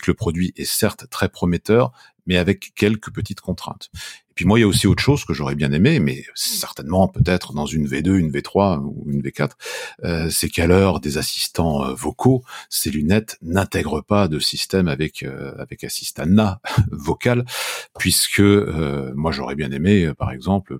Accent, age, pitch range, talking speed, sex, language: French, 50-69, 75-100 Hz, 180 wpm, male, French